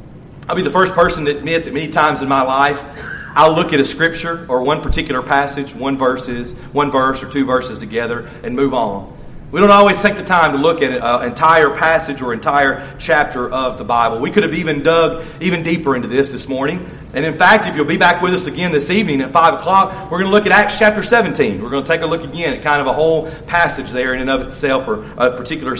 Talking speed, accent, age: 245 wpm, American, 40-59